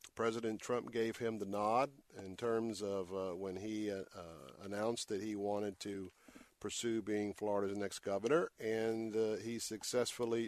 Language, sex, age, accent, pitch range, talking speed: English, male, 50-69, American, 100-120 Hz, 160 wpm